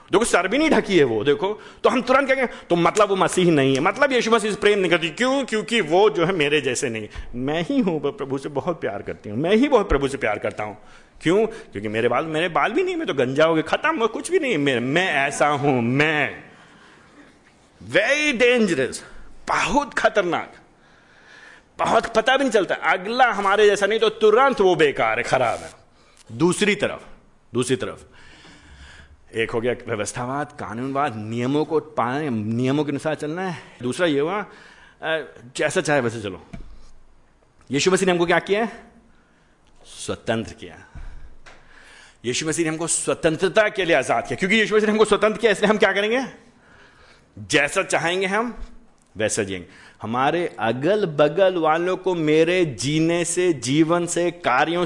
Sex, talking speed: male, 135 wpm